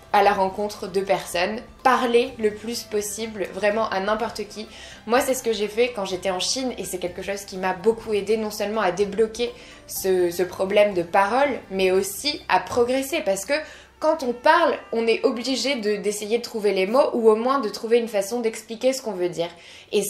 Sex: female